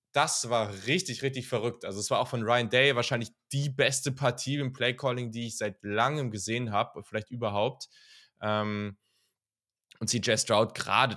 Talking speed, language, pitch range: 165 wpm, German, 100-120 Hz